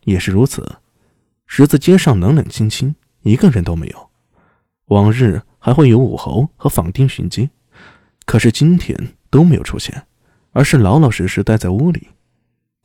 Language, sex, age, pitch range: Chinese, male, 20-39, 100-145 Hz